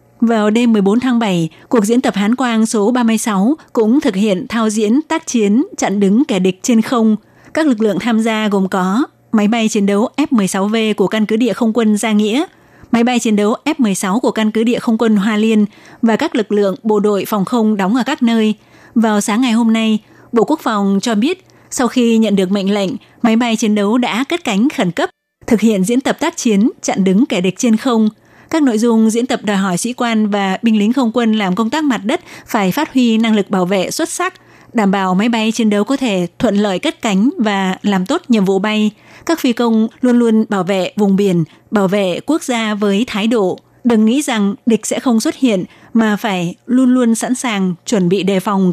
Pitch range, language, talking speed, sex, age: 205-245 Hz, Vietnamese, 230 wpm, female, 20-39